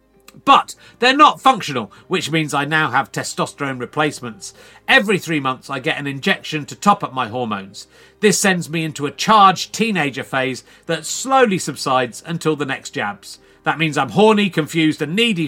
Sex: male